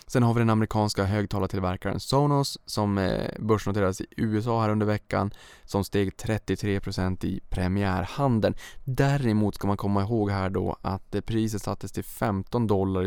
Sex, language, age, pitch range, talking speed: male, Swedish, 20-39, 95-110 Hz, 145 wpm